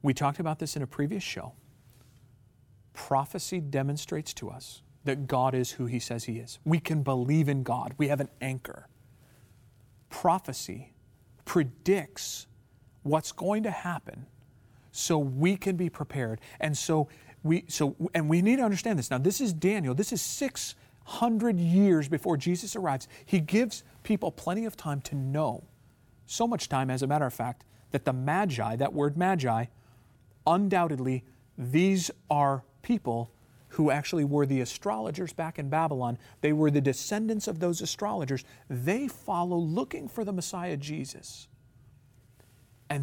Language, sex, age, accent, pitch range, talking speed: English, male, 40-59, American, 120-165 Hz, 155 wpm